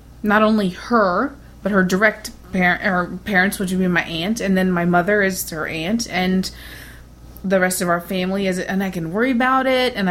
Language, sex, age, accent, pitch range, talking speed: English, female, 30-49, American, 180-225 Hz, 210 wpm